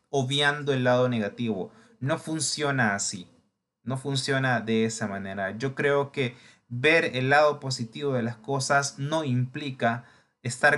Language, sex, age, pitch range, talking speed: Spanish, male, 30-49, 115-145 Hz, 140 wpm